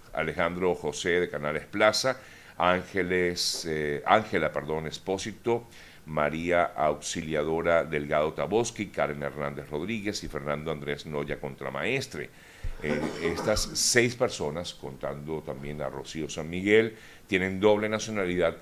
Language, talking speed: Spanish, 115 wpm